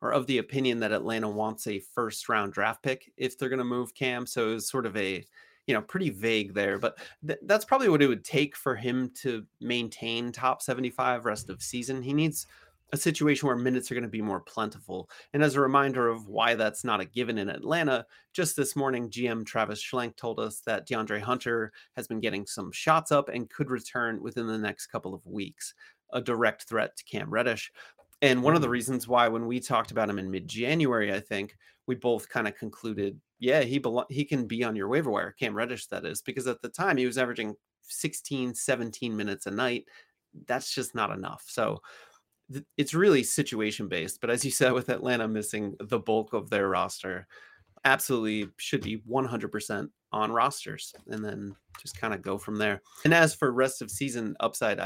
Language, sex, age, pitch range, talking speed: English, male, 30-49, 110-130 Hz, 205 wpm